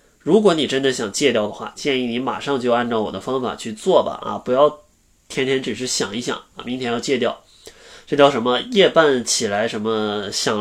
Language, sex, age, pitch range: Chinese, male, 20-39, 110-150 Hz